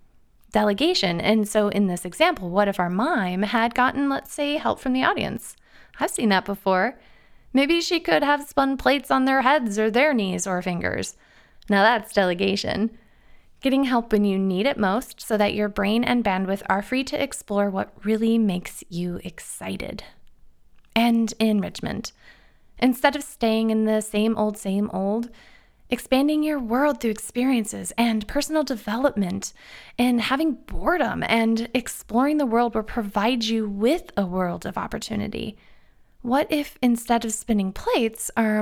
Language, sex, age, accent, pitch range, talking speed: English, female, 20-39, American, 195-245 Hz, 160 wpm